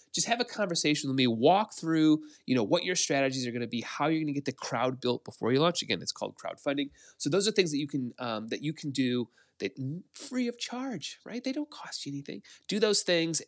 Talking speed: 255 wpm